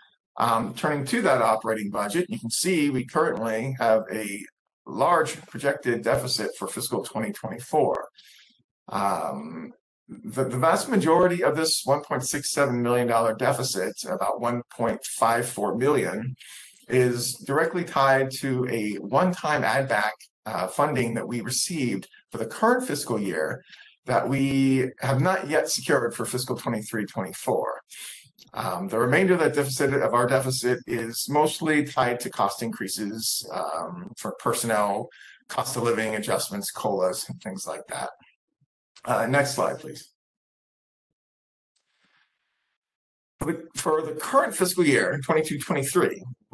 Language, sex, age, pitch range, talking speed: English, male, 50-69, 120-155 Hz, 120 wpm